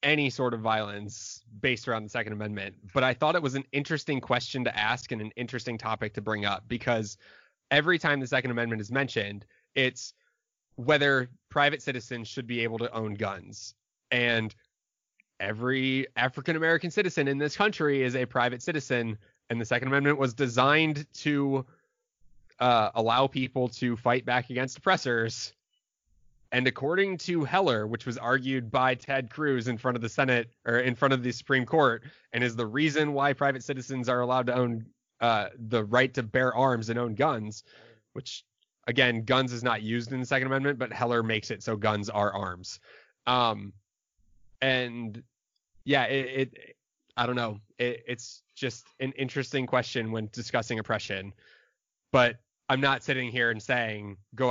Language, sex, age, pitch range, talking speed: English, male, 20-39, 115-135 Hz, 170 wpm